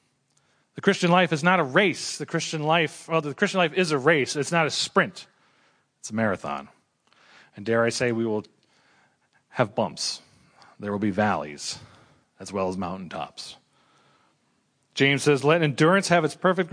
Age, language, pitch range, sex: 40-59, English, 140-175 Hz, male